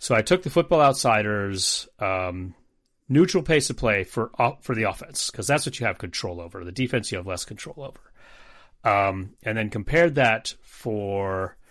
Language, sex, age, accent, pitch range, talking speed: English, male, 30-49, American, 95-130 Hz, 180 wpm